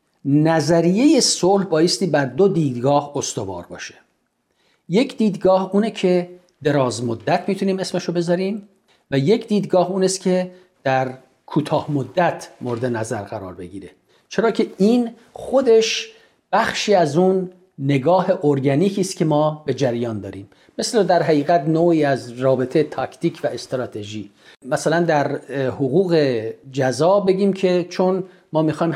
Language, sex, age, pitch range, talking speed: Persian, male, 50-69, 140-185 Hz, 130 wpm